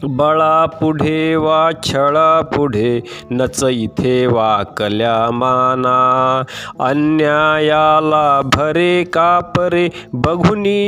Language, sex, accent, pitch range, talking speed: Marathi, male, native, 130-175 Hz, 70 wpm